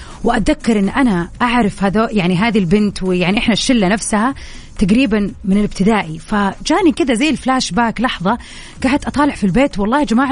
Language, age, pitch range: Arabic, 30-49, 195-255 Hz